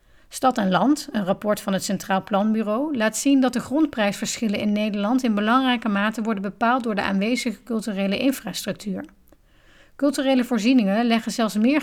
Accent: Dutch